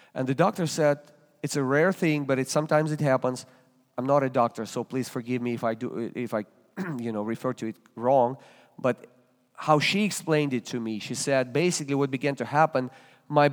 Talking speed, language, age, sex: 210 wpm, English, 40-59, male